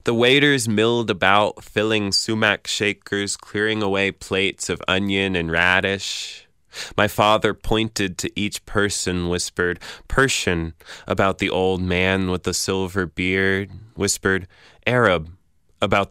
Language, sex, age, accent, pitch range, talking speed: English, male, 20-39, American, 95-115 Hz, 125 wpm